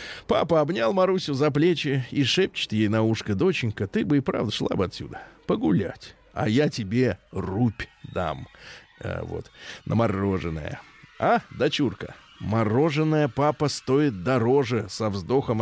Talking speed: 135 wpm